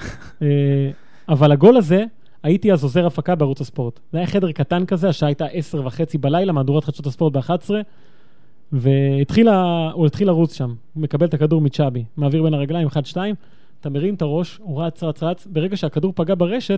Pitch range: 145-185 Hz